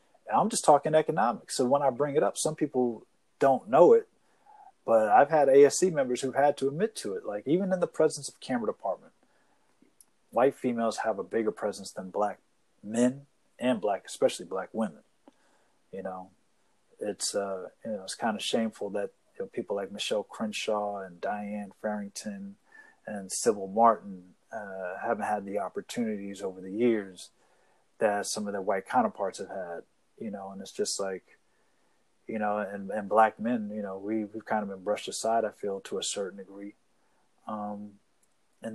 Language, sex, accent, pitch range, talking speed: English, male, American, 105-145 Hz, 180 wpm